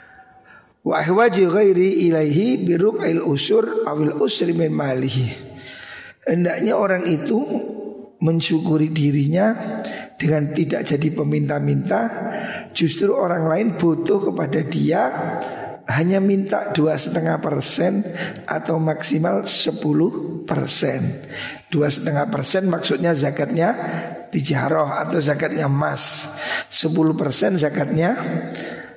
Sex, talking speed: male, 70 wpm